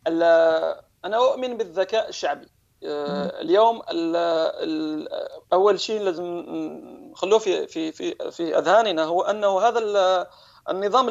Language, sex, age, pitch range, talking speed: Arabic, male, 40-59, 170-220 Hz, 90 wpm